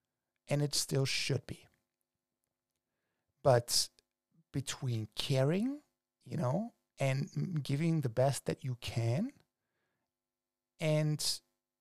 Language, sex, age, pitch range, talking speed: English, male, 50-69, 125-160 Hz, 90 wpm